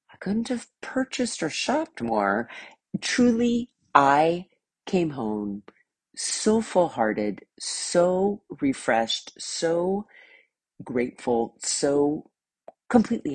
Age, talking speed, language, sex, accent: 40-59, 80 wpm, English, female, American